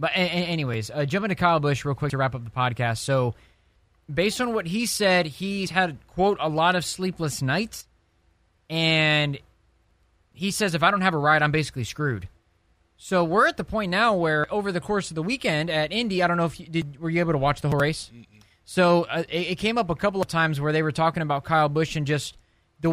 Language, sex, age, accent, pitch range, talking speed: English, male, 20-39, American, 125-175 Hz, 230 wpm